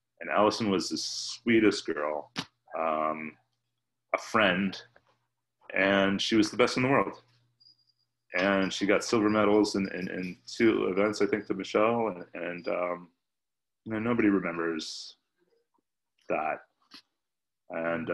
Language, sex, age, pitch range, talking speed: English, male, 30-49, 80-120 Hz, 130 wpm